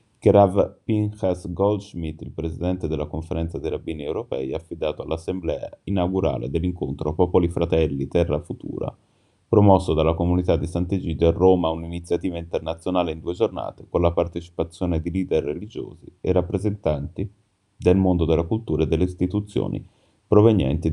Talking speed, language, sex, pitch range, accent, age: 140 wpm, Italian, male, 80-100 Hz, native, 30-49